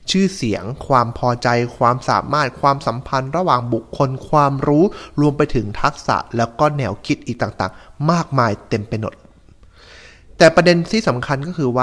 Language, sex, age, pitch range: Thai, male, 20-39, 105-150 Hz